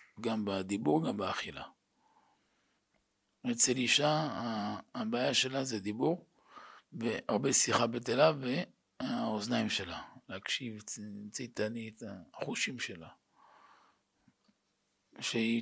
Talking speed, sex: 85 wpm, male